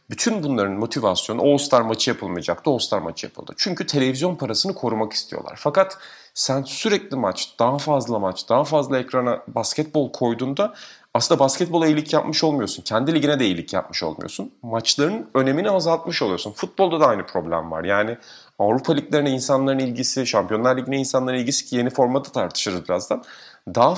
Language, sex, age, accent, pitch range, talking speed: Turkish, male, 40-59, native, 115-155 Hz, 160 wpm